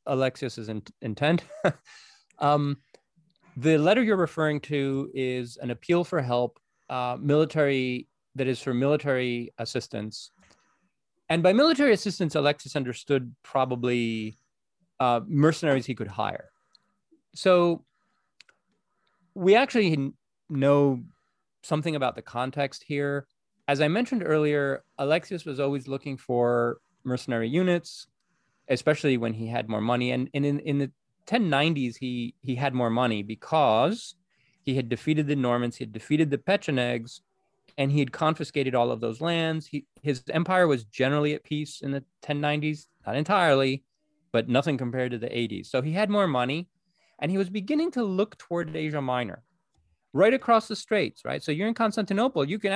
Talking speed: 150 wpm